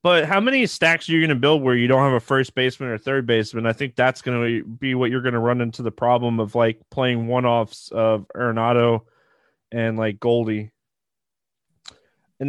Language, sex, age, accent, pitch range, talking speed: English, male, 20-39, American, 125-170 Hz, 205 wpm